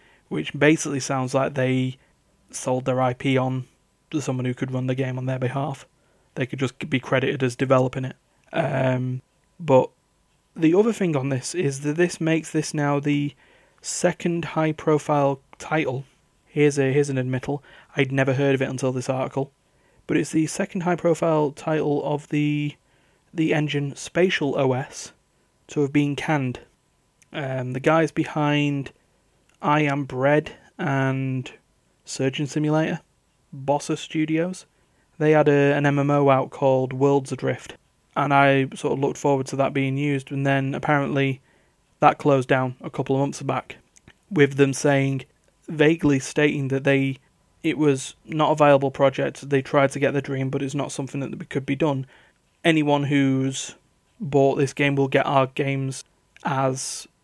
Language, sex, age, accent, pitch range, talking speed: English, male, 30-49, British, 135-150 Hz, 160 wpm